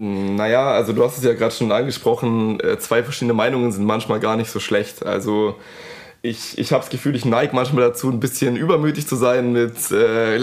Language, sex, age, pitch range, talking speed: German, male, 20-39, 105-125 Hz, 200 wpm